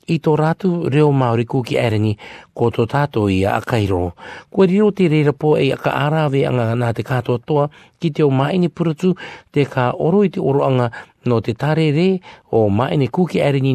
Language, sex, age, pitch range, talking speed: English, male, 50-69, 110-150 Hz, 165 wpm